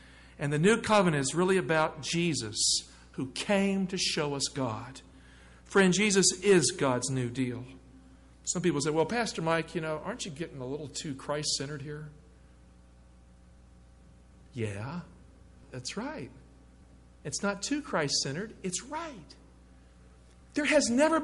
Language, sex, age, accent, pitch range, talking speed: English, male, 50-69, American, 145-240 Hz, 135 wpm